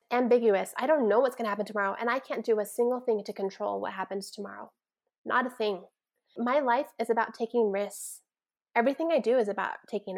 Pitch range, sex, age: 210-245 Hz, female, 20-39